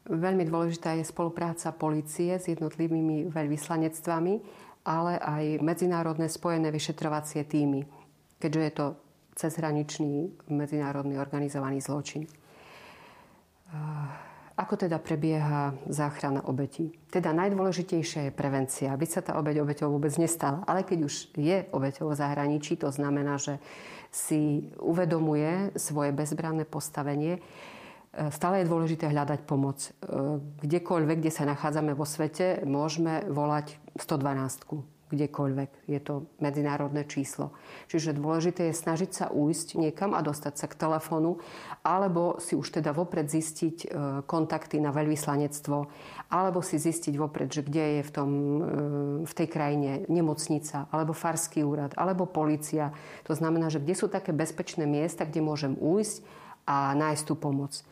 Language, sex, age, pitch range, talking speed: Slovak, female, 40-59, 145-165 Hz, 130 wpm